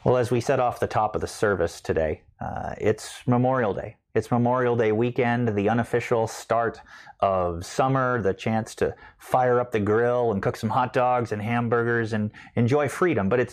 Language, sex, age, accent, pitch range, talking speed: English, male, 30-49, American, 110-125 Hz, 185 wpm